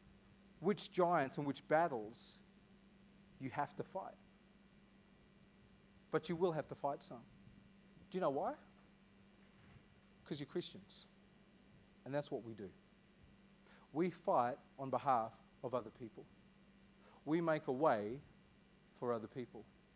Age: 40-59